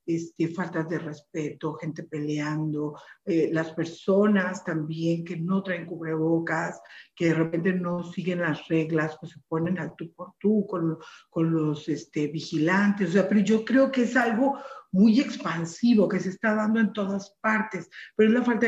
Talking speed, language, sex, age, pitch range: 175 wpm, Spanish, female, 50-69, 170-205 Hz